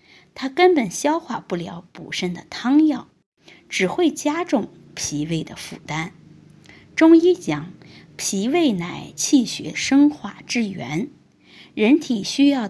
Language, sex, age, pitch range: Chinese, female, 20-39, 175-290 Hz